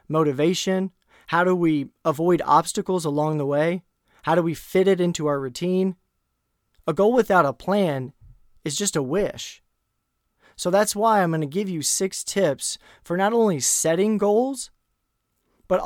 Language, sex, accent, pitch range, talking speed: English, male, American, 145-190 Hz, 160 wpm